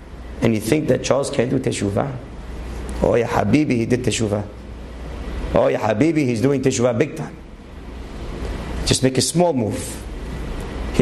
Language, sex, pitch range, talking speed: English, male, 105-130 Hz, 150 wpm